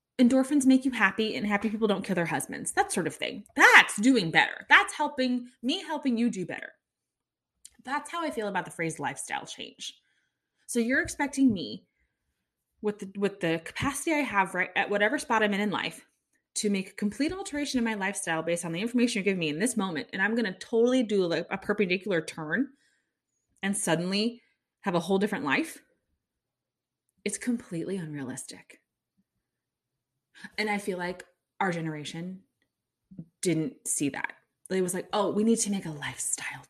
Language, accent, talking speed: English, American, 175 wpm